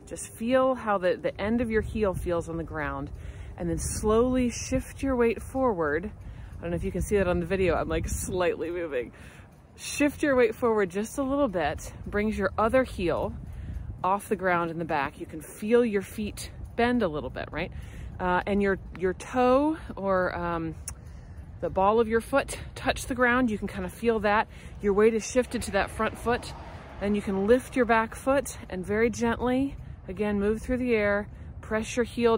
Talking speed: 205 wpm